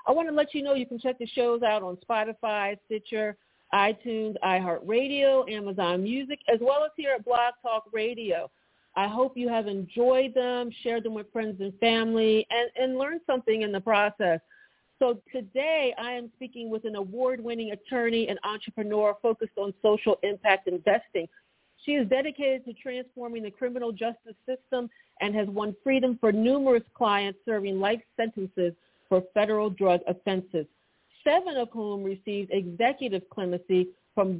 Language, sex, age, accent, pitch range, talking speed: English, female, 40-59, American, 200-245 Hz, 160 wpm